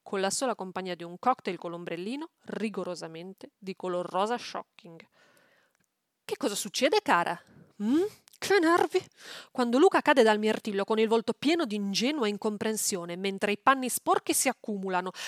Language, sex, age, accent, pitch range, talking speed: Italian, female, 30-49, native, 185-245 Hz, 155 wpm